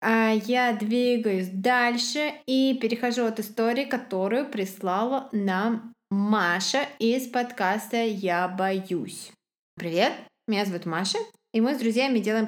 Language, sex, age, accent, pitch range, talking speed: Russian, female, 20-39, native, 195-235 Hz, 120 wpm